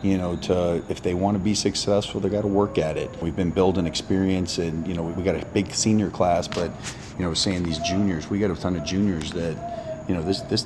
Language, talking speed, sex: English, 255 wpm, male